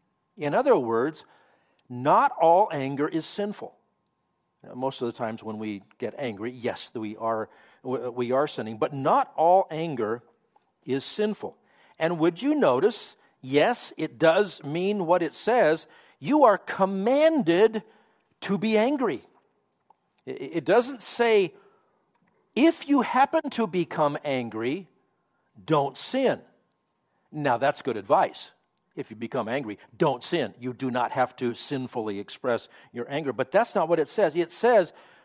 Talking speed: 140 wpm